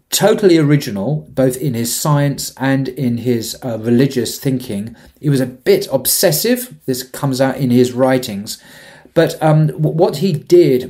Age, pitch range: 30-49, 120-150 Hz